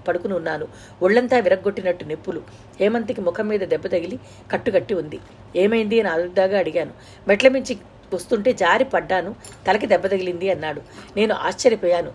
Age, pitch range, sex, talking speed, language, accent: 50-69, 180-235 Hz, female, 130 wpm, Telugu, native